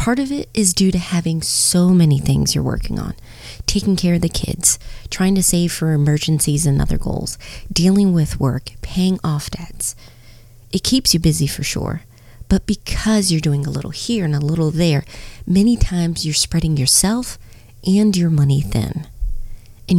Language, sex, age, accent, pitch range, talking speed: English, female, 30-49, American, 140-185 Hz, 175 wpm